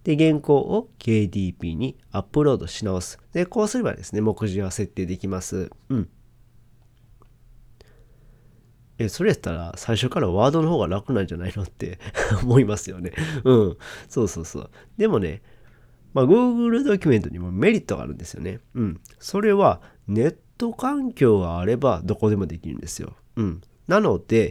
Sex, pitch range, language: male, 95-140 Hz, Japanese